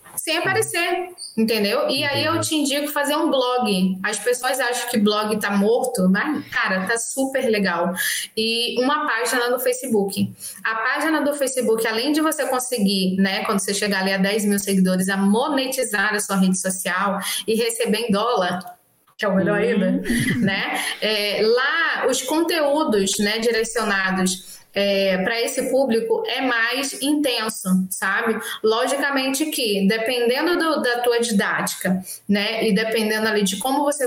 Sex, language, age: female, Portuguese, 20-39